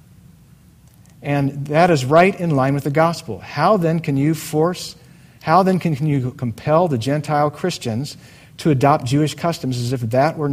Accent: American